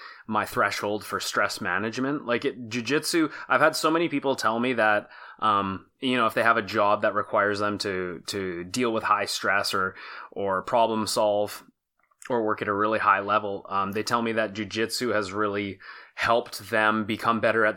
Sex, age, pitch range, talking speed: male, 20-39, 105-120 Hz, 190 wpm